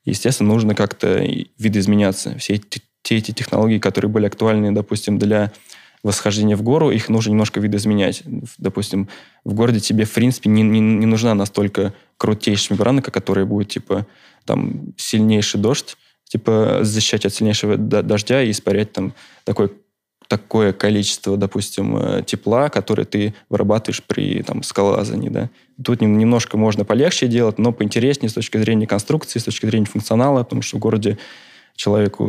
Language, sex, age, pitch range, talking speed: Russian, male, 20-39, 105-115 Hz, 150 wpm